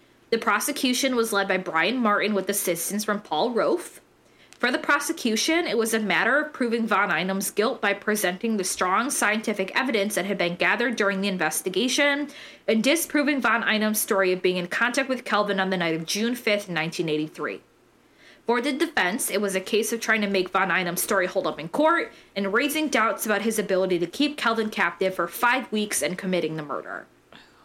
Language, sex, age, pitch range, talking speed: English, female, 20-39, 185-240 Hz, 195 wpm